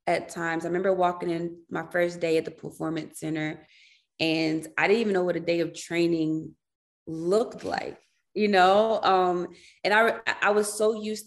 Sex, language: female, English